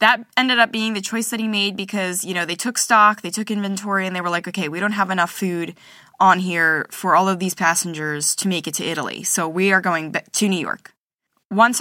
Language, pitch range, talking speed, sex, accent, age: English, 175-205 Hz, 245 wpm, female, American, 10-29